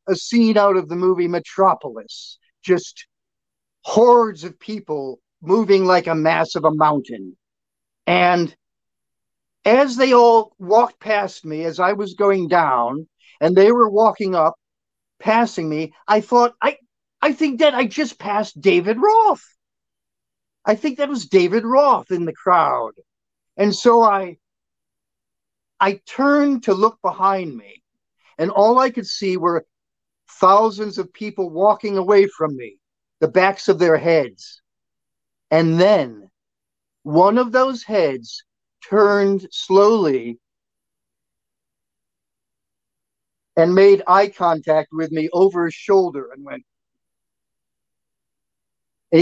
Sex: male